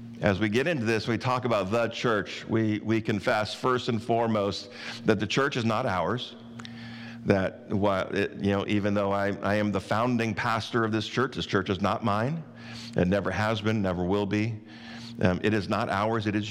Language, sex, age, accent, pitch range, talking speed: English, male, 50-69, American, 100-115 Hz, 205 wpm